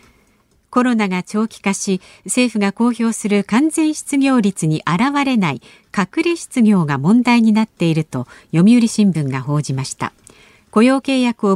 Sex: female